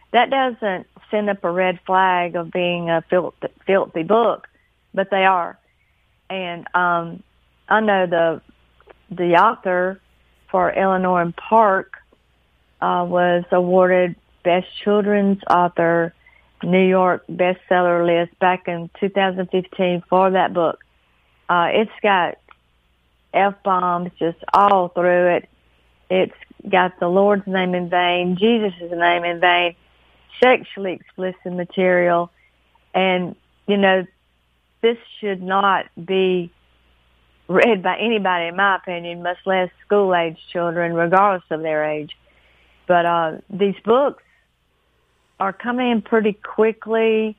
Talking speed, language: 120 wpm, English